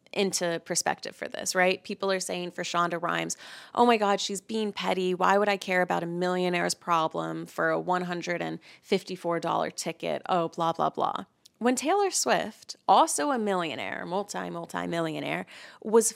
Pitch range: 175-220 Hz